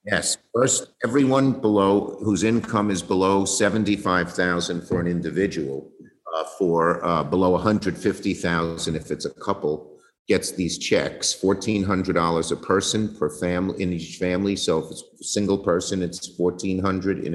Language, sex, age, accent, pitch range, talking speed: English, male, 50-69, American, 80-100 Hz, 165 wpm